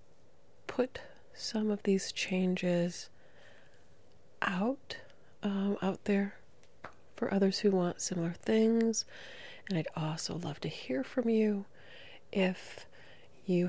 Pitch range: 155-185 Hz